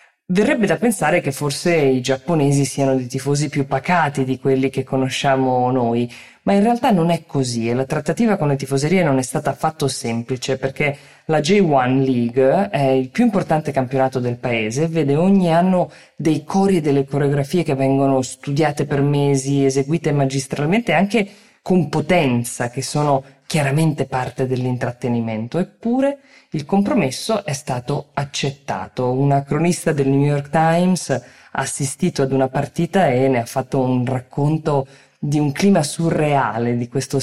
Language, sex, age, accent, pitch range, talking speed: Italian, female, 20-39, native, 130-160 Hz, 160 wpm